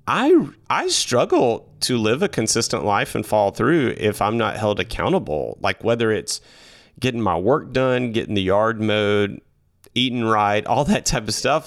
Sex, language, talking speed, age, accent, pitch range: male, English, 175 wpm, 30-49, American, 95-125 Hz